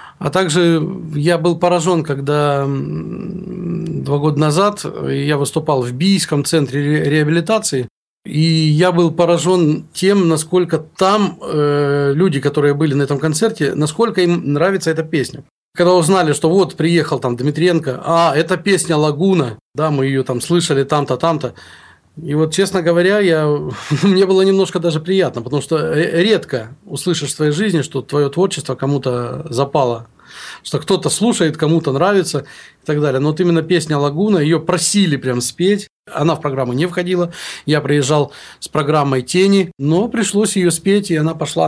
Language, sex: Russian, male